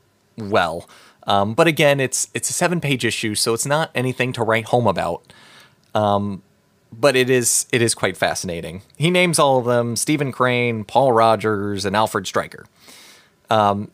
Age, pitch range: 30-49, 105-140 Hz